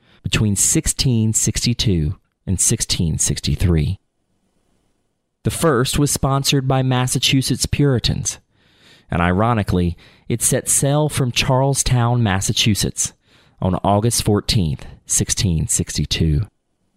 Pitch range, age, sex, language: 95-120 Hz, 30-49, male, English